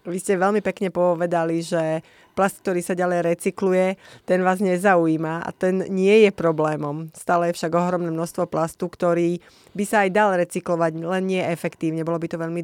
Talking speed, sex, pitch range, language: 180 wpm, female, 170-195 Hz, Slovak